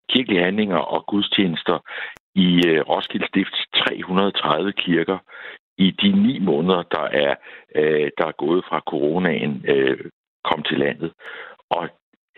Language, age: Danish, 60-79